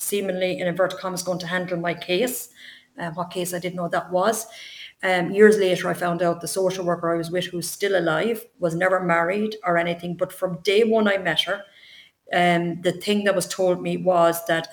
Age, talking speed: 30-49, 220 wpm